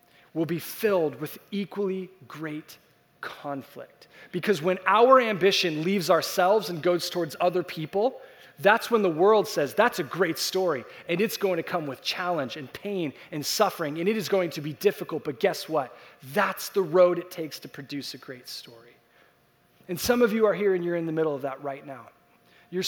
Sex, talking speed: male, 195 wpm